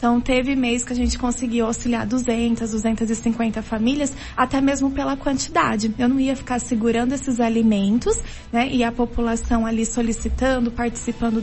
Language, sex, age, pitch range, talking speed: Portuguese, female, 20-39, 230-265 Hz, 150 wpm